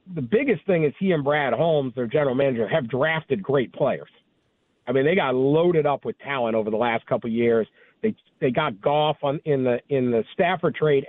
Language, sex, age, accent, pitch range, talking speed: English, male, 50-69, American, 135-160 Hz, 215 wpm